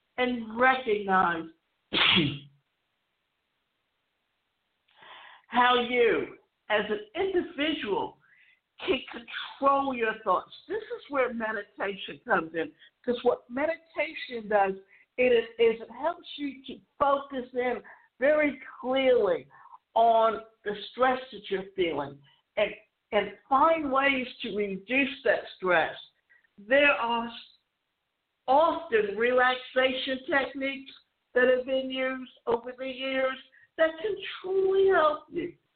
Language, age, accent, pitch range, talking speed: English, 60-79, American, 225-295 Hz, 100 wpm